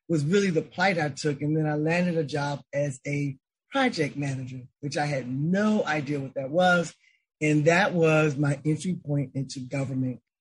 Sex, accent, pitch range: male, American, 145-180 Hz